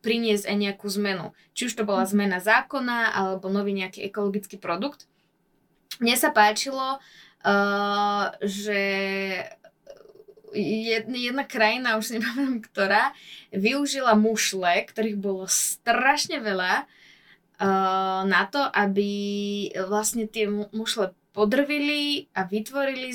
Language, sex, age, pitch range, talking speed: Slovak, female, 20-39, 195-230 Hz, 100 wpm